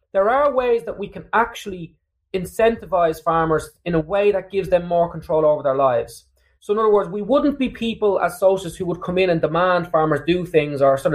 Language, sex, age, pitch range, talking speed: English, male, 20-39, 160-210 Hz, 220 wpm